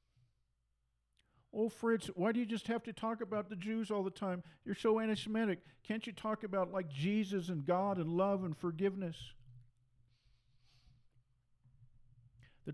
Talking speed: 145 wpm